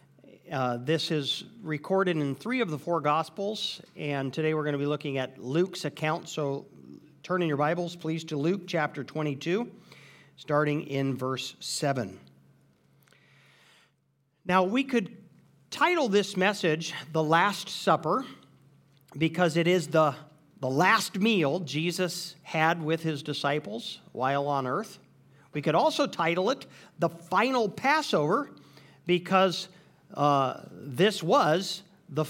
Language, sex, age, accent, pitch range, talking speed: English, male, 50-69, American, 145-190 Hz, 130 wpm